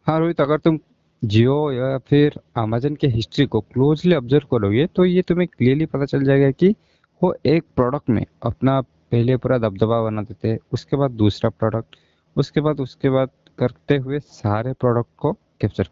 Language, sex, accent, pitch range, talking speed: Hindi, male, native, 110-145 Hz, 175 wpm